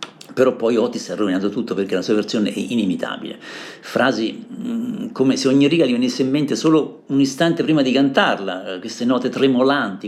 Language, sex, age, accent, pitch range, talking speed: Italian, male, 50-69, native, 105-140 Hz, 185 wpm